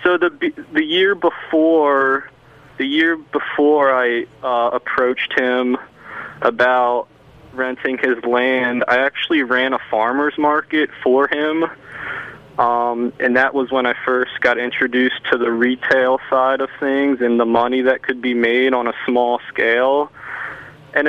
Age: 20-39